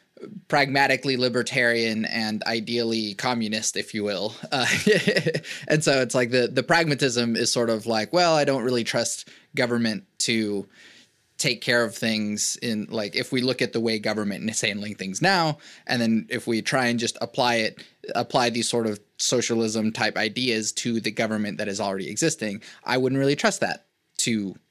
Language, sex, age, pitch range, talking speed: English, male, 20-39, 110-130 Hz, 175 wpm